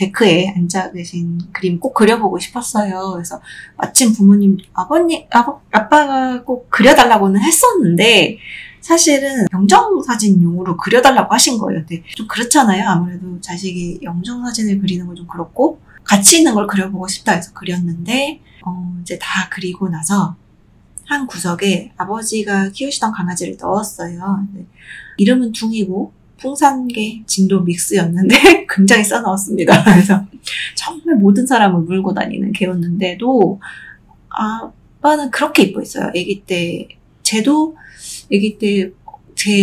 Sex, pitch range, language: female, 185-250 Hz, Korean